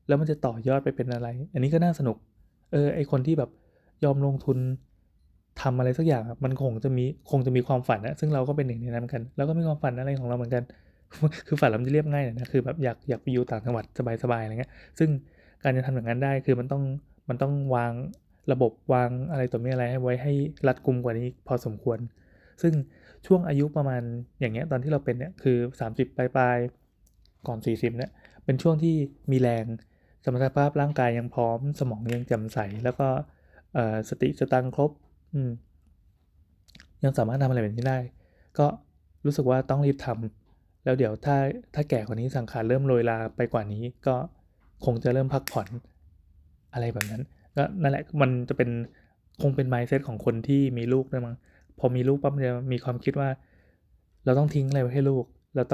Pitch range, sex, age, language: 115-140 Hz, male, 20-39, Thai